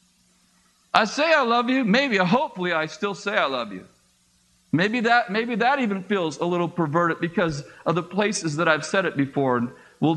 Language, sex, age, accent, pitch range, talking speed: English, male, 50-69, American, 165-250 Hz, 195 wpm